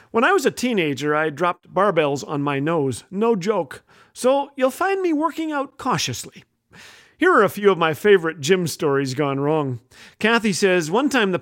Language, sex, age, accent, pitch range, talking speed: English, male, 40-59, American, 155-225 Hz, 190 wpm